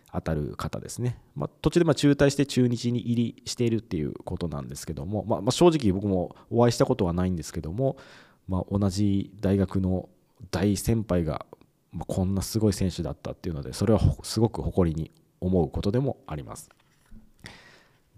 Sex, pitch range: male, 90-125 Hz